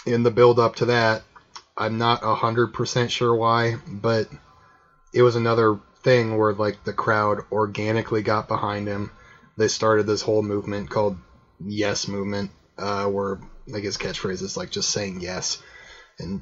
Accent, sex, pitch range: American, male, 105-120 Hz